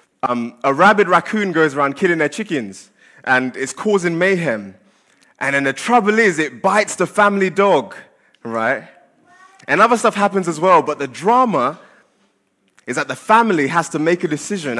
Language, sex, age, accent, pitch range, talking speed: English, male, 20-39, British, 135-185 Hz, 170 wpm